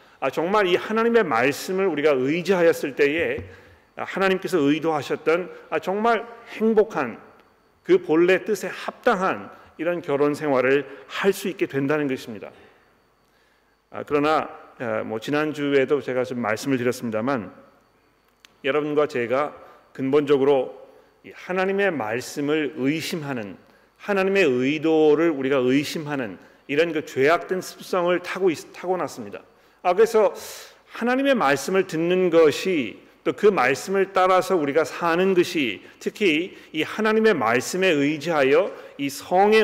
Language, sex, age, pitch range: Korean, male, 40-59, 150-215 Hz